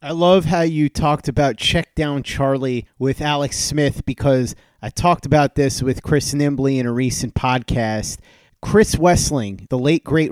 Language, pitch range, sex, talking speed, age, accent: English, 130-160 Hz, male, 170 wpm, 30-49, American